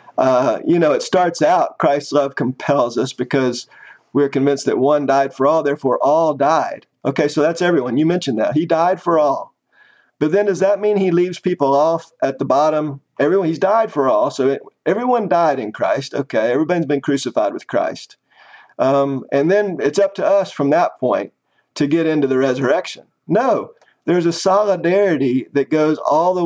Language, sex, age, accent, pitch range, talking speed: English, male, 50-69, American, 140-180 Hz, 190 wpm